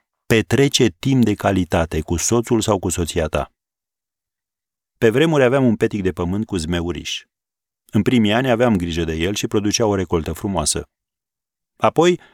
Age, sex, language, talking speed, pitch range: 40-59, male, Romanian, 155 wpm, 90-120 Hz